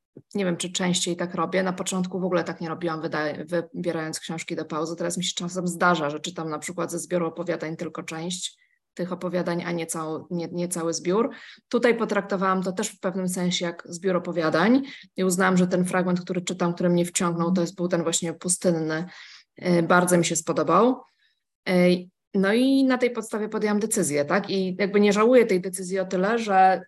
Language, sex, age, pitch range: Polish, female, 20-39, 170-190 Hz